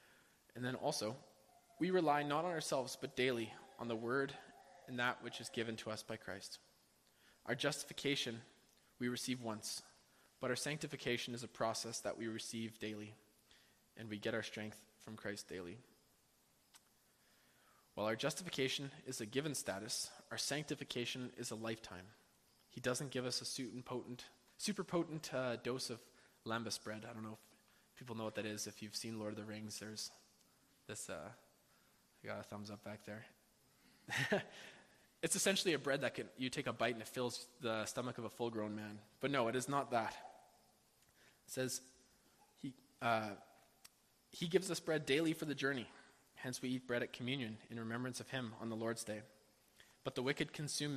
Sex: male